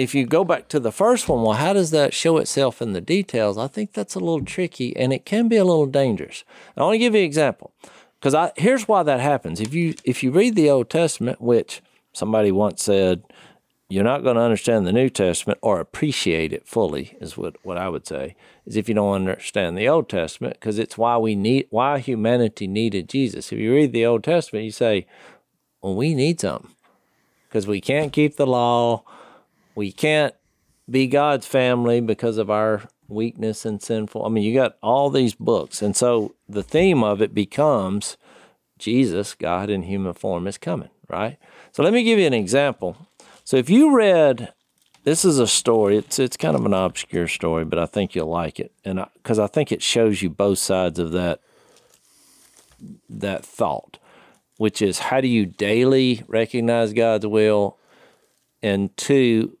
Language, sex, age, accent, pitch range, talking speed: English, male, 50-69, American, 105-140 Hz, 195 wpm